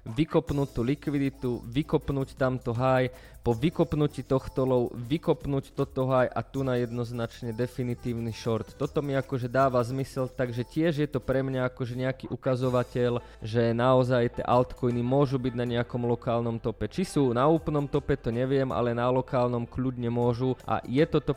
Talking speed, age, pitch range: 165 wpm, 20-39, 120-135 Hz